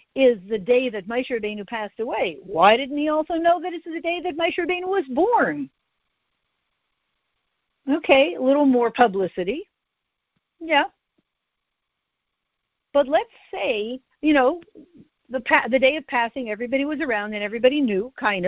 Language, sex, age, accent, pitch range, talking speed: English, female, 50-69, American, 205-290 Hz, 145 wpm